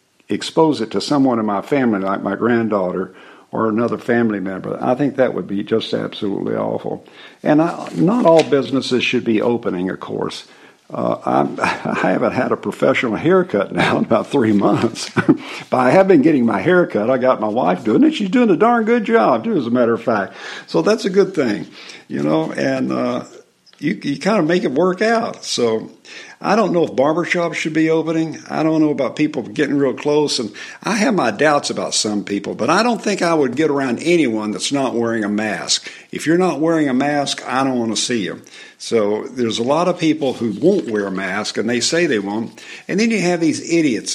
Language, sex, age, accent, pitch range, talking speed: English, male, 60-79, American, 110-175 Hz, 215 wpm